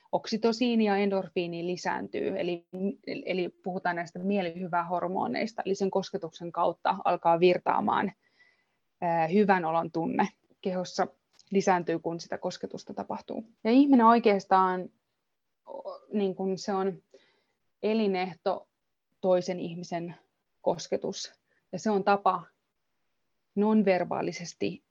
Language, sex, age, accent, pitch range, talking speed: Finnish, female, 20-39, native, 180-215 Hz, 100 wpm